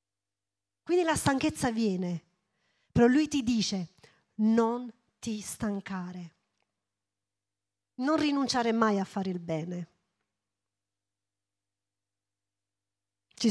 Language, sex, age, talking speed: Italian, female, 40-59, 85 wpm